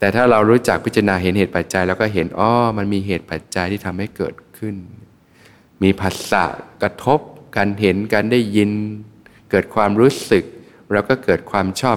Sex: male